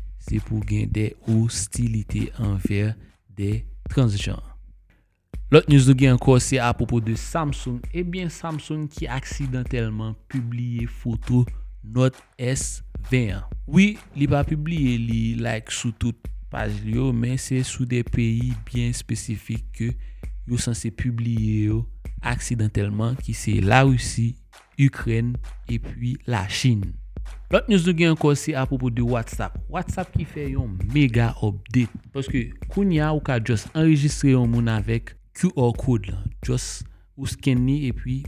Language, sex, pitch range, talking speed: French, male, 110-130 Hz, 145 wpm